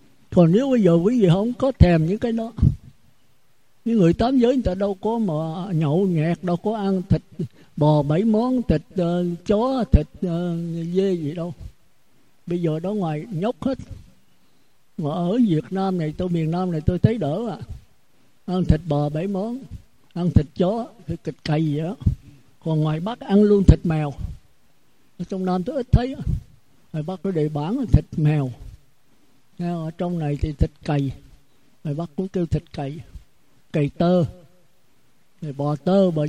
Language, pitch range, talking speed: Vietnamese, 150-205 Hz, 170 wpm